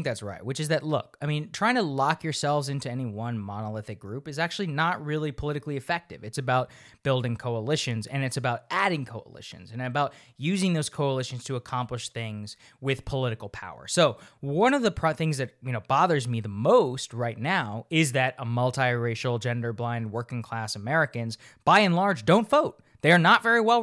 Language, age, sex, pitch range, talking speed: English, 20-39, male, 120-170 Hz, 190 wpm